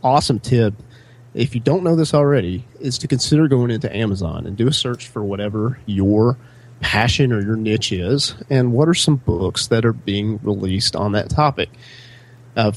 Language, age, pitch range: English, 30-49, 105-125 Hz